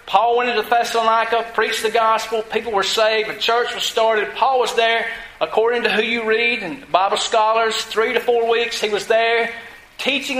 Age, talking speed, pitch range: 40-59, 190 wpm, 210-250 Hz